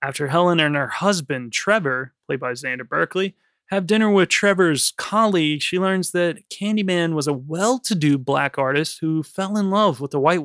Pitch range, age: 135-175 Hz, 20-39